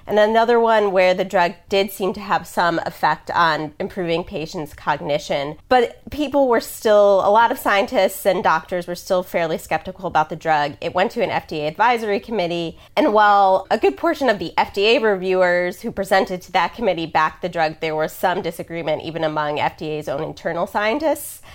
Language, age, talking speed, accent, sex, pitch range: English, 20-39, 185 wpm, American, female, 165-210 Hz